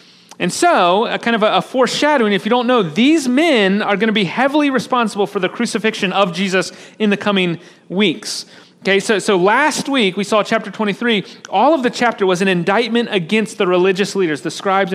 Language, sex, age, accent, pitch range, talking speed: English, male, 40-59, American, 190-230 Hz, 200 wpm